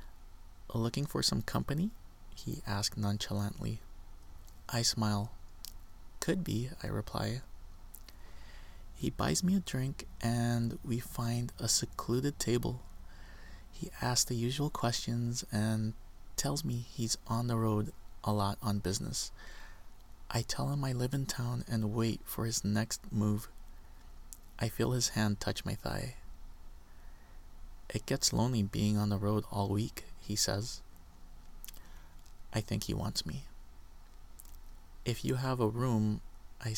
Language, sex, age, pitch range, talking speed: English, male, 20-39, 85-115 Hz, 135 wpm